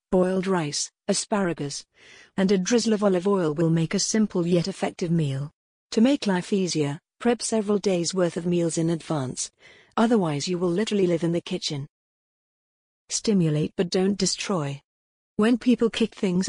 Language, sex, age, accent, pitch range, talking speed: English, female, 50-69, British, 170-205 Hz, 160 wpm